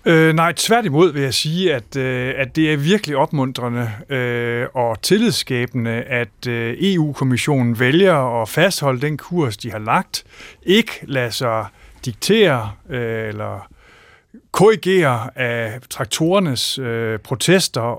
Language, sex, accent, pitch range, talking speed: Danish, male, native, 120-170 Hz, 105 wpm